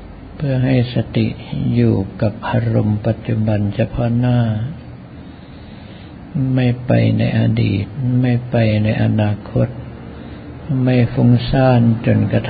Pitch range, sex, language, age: 100-120 Hz, male, Thai, 50-69